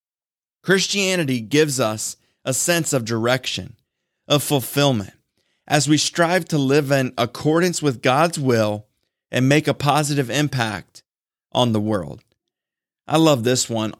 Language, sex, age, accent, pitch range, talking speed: English, male, 30-49, American, 125-160 Hz, 135 wpm